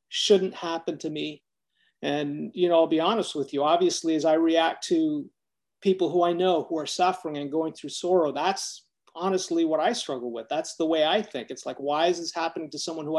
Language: English